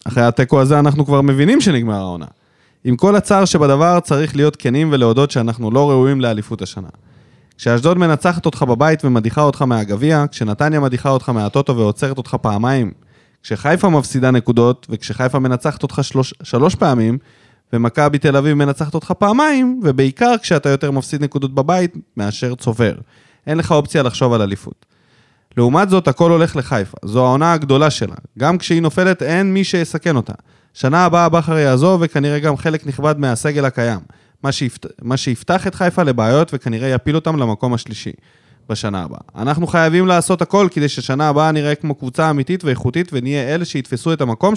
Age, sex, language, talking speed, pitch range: 20-39, male, Hebrew, 165 wpm, 120-160 Hz